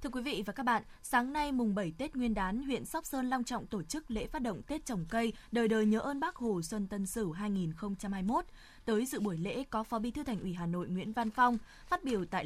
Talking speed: 260 wpm